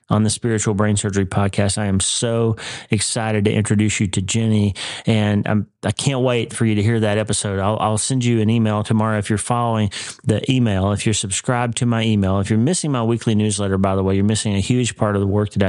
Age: 30-49